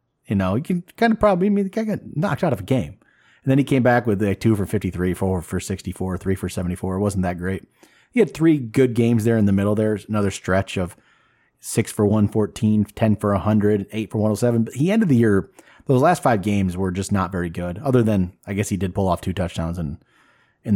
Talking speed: 240 wpm